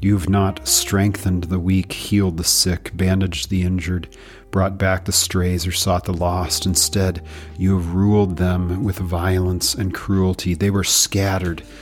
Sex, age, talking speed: male, 40-59, 160 wpm